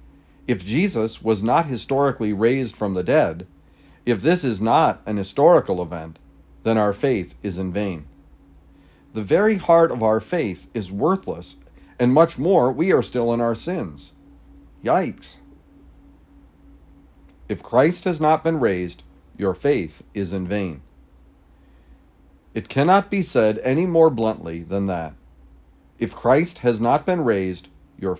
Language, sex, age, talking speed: English, male, 50-69, 145 wpm